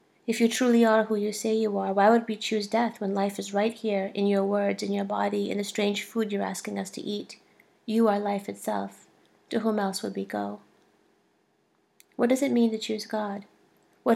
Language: English